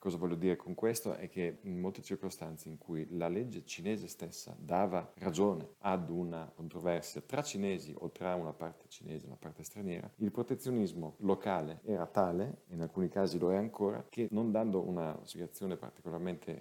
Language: Italian